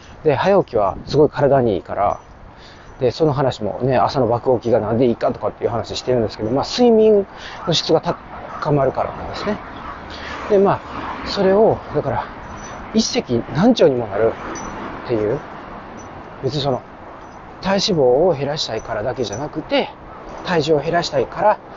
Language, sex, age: Japanese, male, 40-59